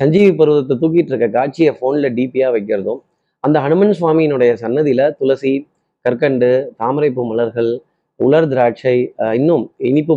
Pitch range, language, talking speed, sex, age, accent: 125-165 Hz, Tamil, 120 wpm, male, 30-49, native